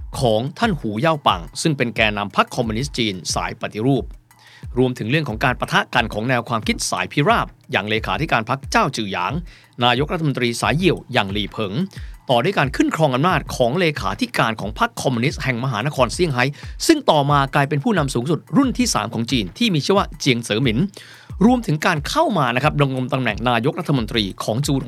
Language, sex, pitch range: Thai, male, 115-160 Hz